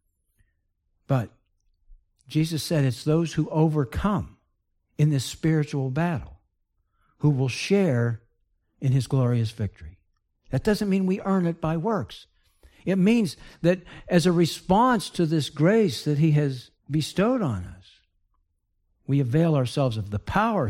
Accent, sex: American, male